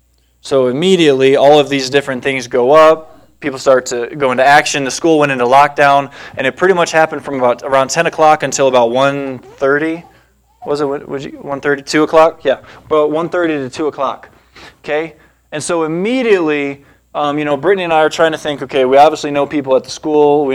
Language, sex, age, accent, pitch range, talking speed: English, male, 20-39, American, 130-155 Hz, 195 wpm